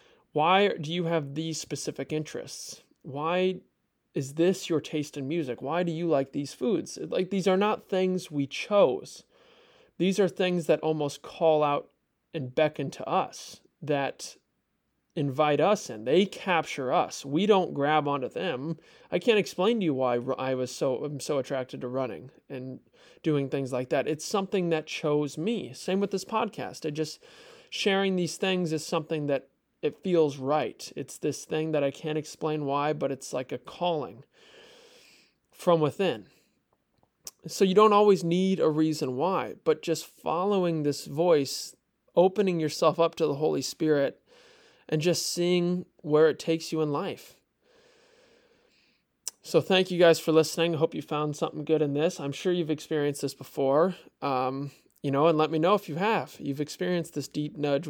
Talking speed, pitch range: 170 wpm, 150-185 Hz